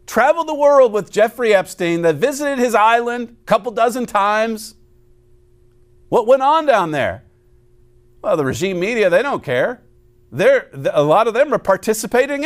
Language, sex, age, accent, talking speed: English, male, 50-69, American, 155 wpm